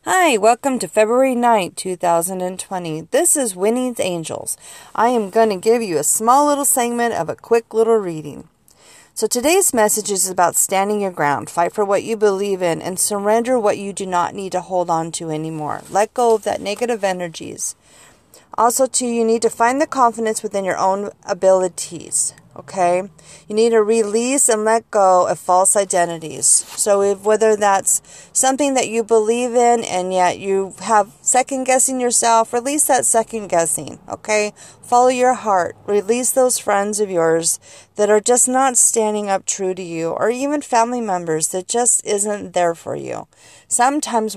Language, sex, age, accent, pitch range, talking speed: English, female, 40-59, American, 185-235 Hz, 175 wpm